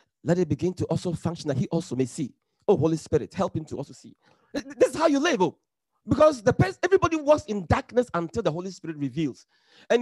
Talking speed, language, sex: 230 wpm, English, male